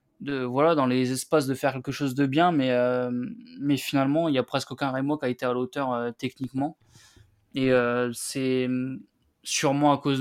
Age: 20-39